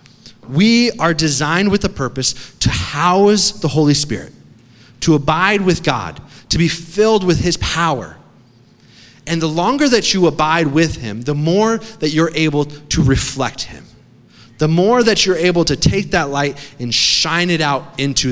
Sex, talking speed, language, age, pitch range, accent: male, 165 wpm, English, 30-49, 135-175 Hz, American